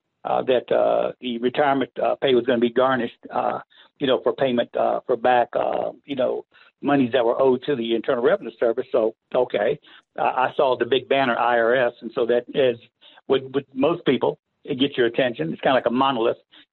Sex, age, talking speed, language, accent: male, 60-79, 210 wpm, English, American